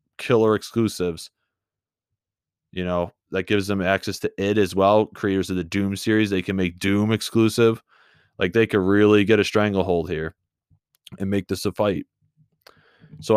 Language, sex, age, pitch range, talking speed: English, male, 20-39, 95-115 Hz, 160 wpm